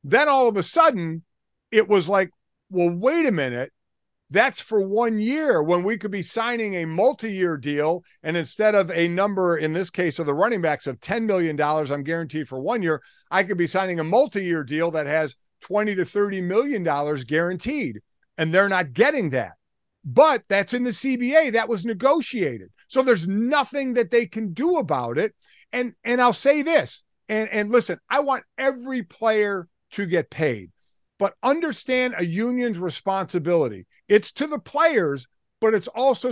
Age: 50-69